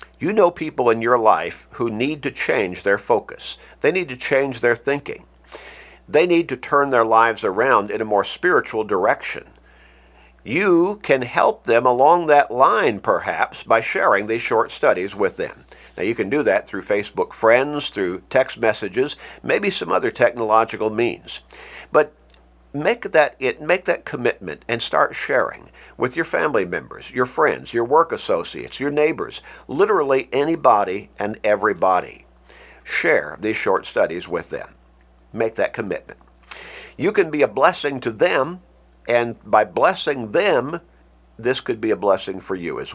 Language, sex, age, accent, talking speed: English, male, 50-69, American, 160 wpm